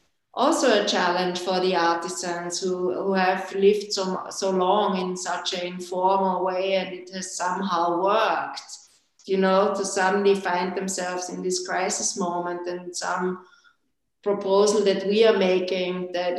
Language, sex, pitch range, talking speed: English, female, 180-205 Hz, 150 wpm